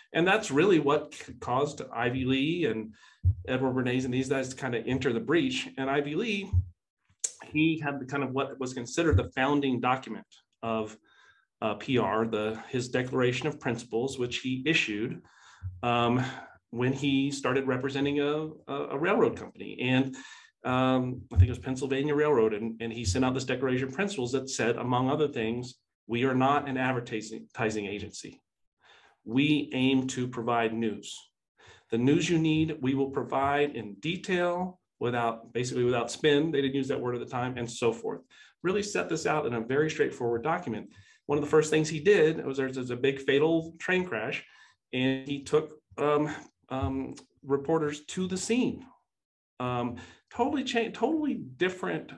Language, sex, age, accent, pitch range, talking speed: English, male, 40-59, American, 120-150 Hz, 170 wpm